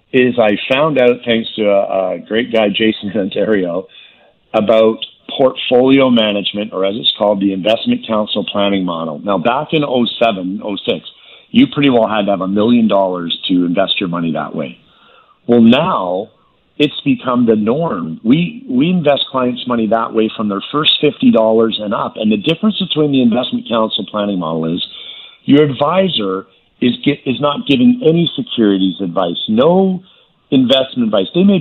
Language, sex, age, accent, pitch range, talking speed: English, male, 50-69, American, 100-145 Hz, 170 wpm